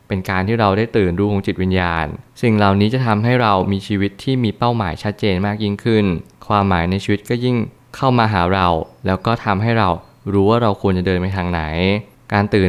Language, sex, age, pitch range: Thai, male, 20-39, 95-115 Hz